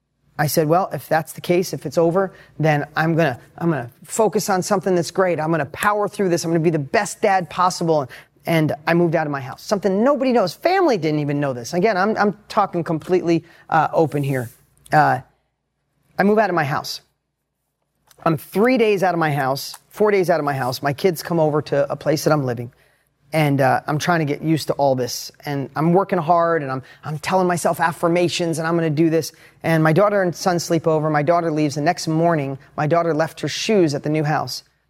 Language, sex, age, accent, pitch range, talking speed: English, male, 30-49, American, 150-185 Hz, 230 wpm